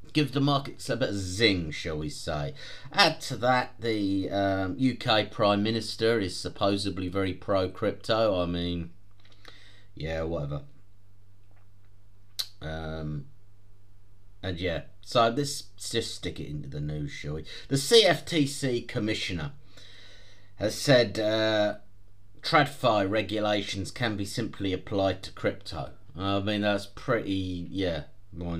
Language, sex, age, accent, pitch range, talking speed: English, male, 30-49, British, 90-110 Hz, 130 wpm